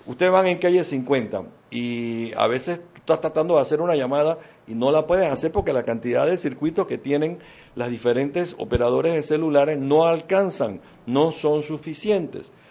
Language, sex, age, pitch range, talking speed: Spanish, male, 60-79, 120-155 Hz, 170 wpm